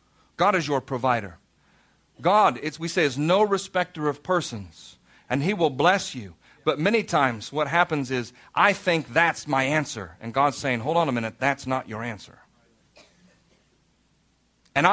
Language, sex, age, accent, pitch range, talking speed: English, male, 40-59, American, 125-170 Hz, 160 wpm